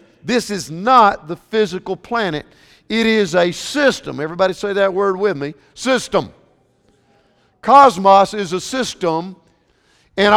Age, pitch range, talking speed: 50-69, 190-250 Hz, 125 wpm